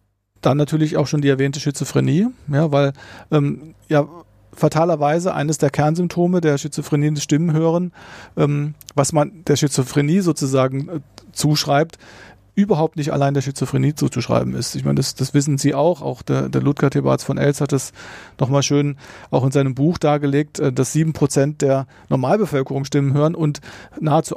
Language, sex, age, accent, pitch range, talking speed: German, male, 40-59, German, 130-155 Hz, 165 wpm